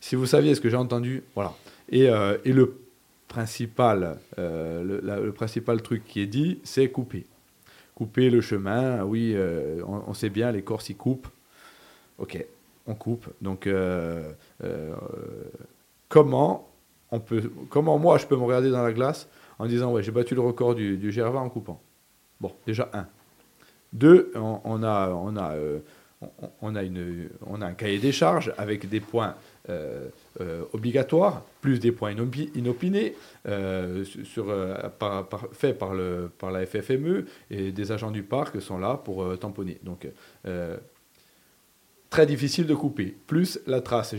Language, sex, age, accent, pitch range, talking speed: French, male, 30-49, French, 100-130 Hz, 170 wpm